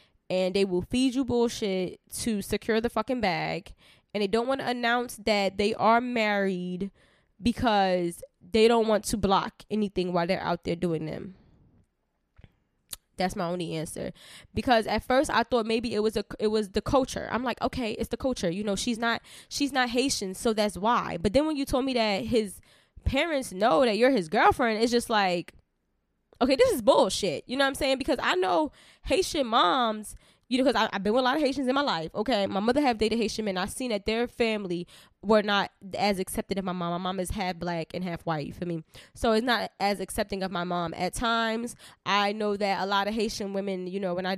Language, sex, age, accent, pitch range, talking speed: English, female, 10-29, American, 195-240 Hz, 220 wpm